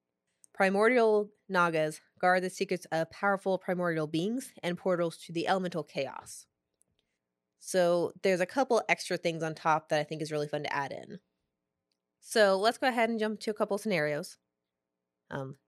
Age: 20-39